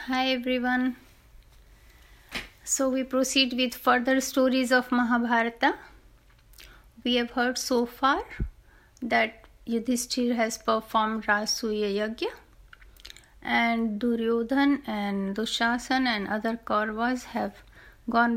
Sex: female